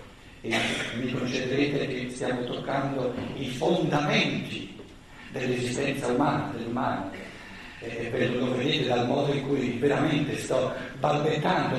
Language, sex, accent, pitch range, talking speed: Italian, male, native, 135-185 Hz, 110 wpm